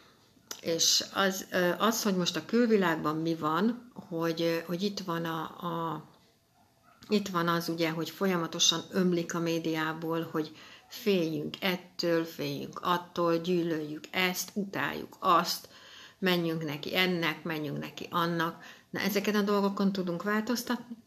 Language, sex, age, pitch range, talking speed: Hungarian, female, 60-79, 160-195 Hz, 120 wpm